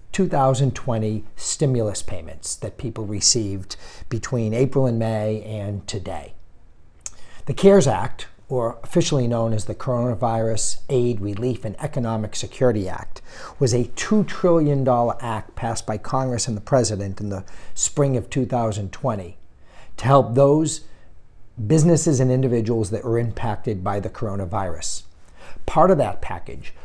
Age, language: 50-69, English